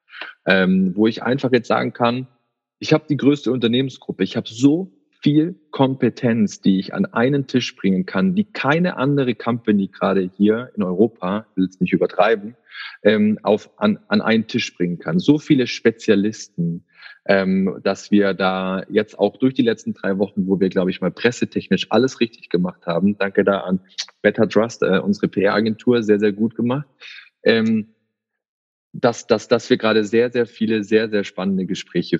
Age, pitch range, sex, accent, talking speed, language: 30-49, 95-120 Hz, male, German, 175 wpm, German